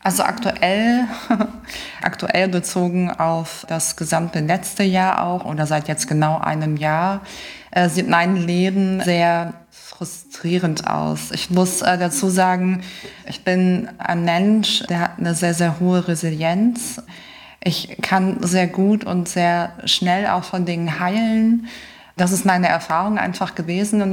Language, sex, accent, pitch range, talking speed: German, female, German, 170-190 Hz, 140 wpm